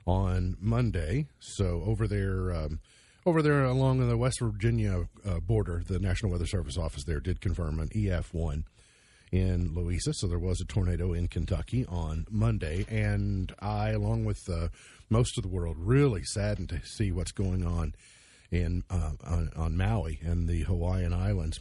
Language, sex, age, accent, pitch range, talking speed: English, male, 50-69, American, 85-115 Hz, 165 wpm